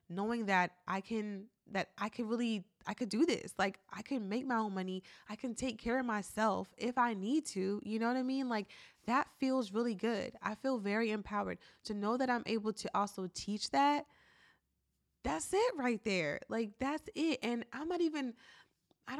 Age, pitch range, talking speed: 20-39, 200-250 Hz, 200 wpm